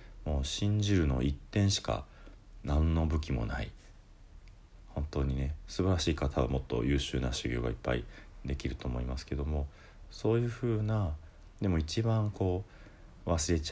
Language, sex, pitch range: Japanese, male, 75-105 Hz